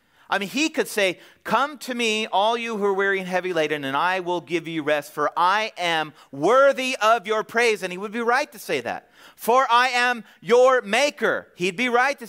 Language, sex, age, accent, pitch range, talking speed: English, male, 40-59, American, 170-250 Hz, 225 wpm